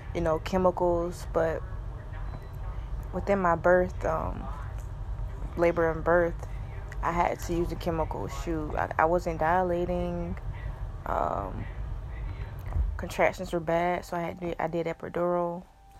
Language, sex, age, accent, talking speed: English, female, 20-39, American, 115 wpm